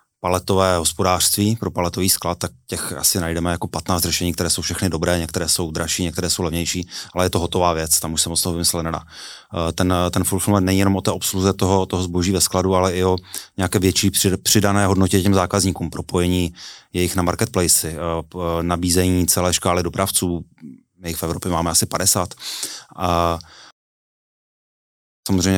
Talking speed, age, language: 170 wpm, 30-49, Czech